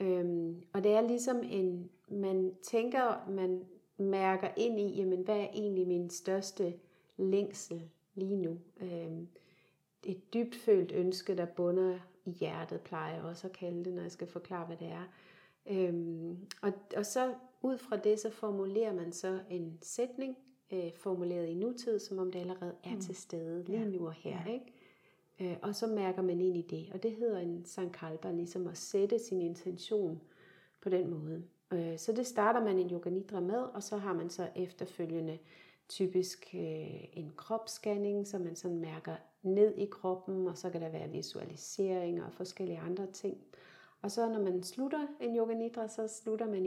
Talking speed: 175 wpm